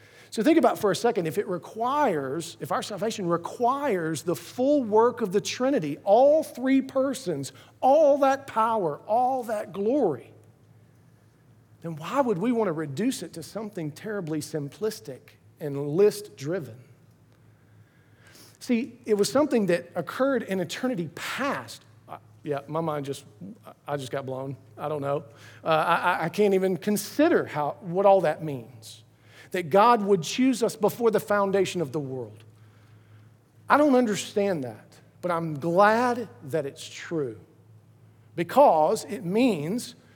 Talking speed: 145 wpm